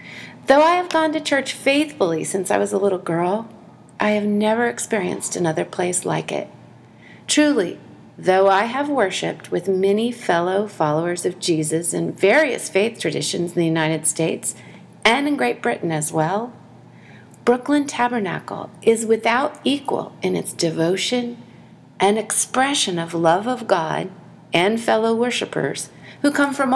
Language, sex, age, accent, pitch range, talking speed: English, female, 40-59, American, 180-260 Hz, 150 wpm